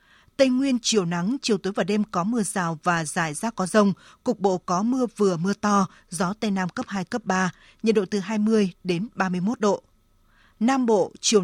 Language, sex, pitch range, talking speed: Vietnamese, female, 180-220 Hz, 210 wpm